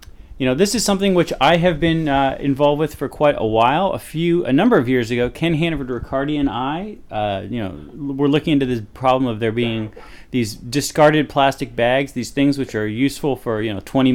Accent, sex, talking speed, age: American, male, 220 wpm, 30-49